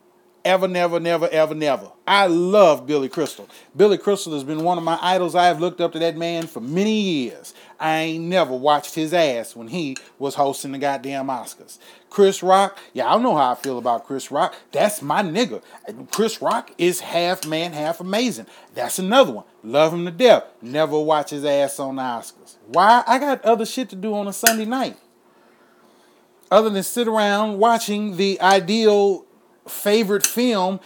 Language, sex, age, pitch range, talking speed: English, male, 30-49, 155-220 Hz, 185 wpm